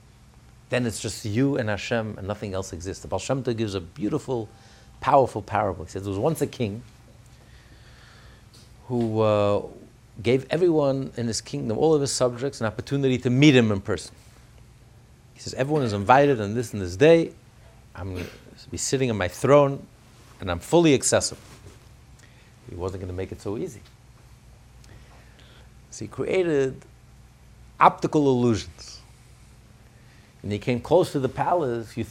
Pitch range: 110-145 Hz